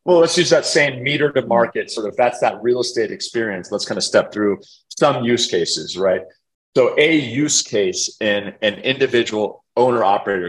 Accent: American